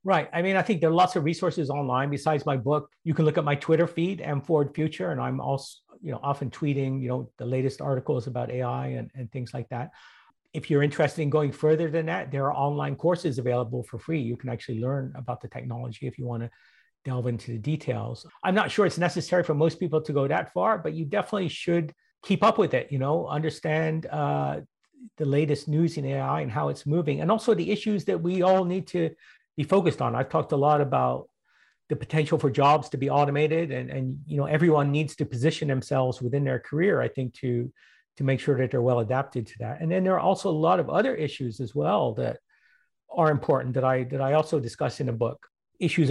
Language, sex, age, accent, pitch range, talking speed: English, male, 50-69, American, 130-160 Hz, 235 wpm